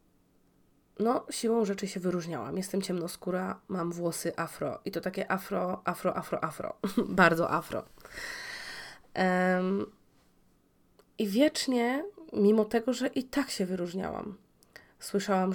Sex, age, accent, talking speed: female, 20-39, native, 110 wpm